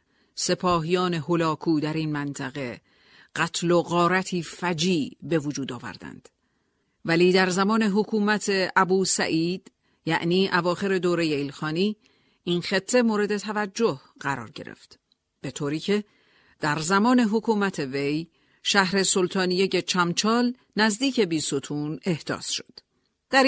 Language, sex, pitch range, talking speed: Persian, female, 160-200 Hz, 110 wpm